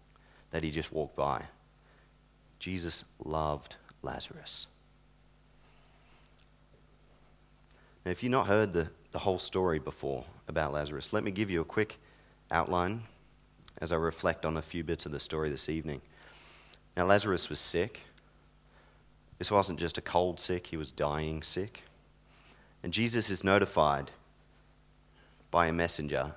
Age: 30-49